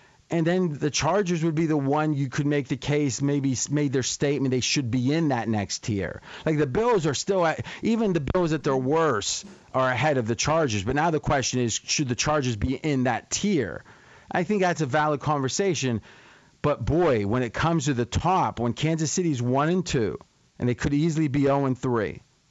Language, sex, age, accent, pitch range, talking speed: English, male, 40-59, American, 130-160 Hz, 215 wpm